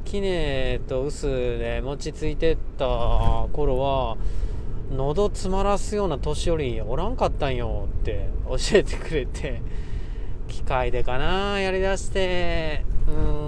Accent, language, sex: native, Japanese, male